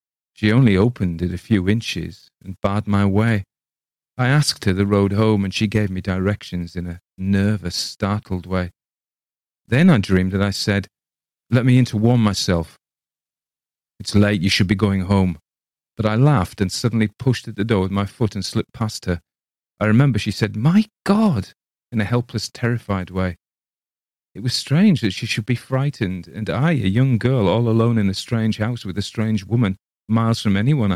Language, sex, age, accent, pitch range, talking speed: English, male, 40-59, British, 95-120 Hz, 190 wpm